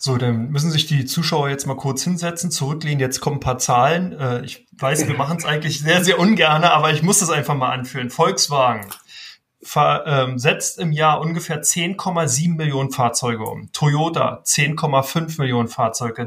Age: 30-49